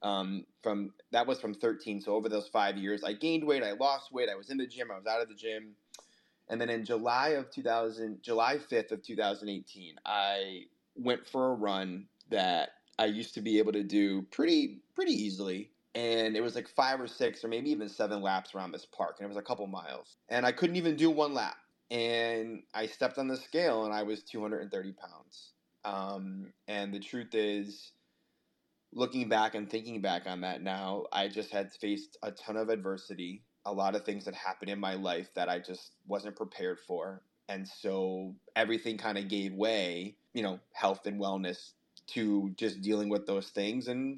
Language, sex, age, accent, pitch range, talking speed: English, male, 20-39, American, 100-115 Hz, 200 wpm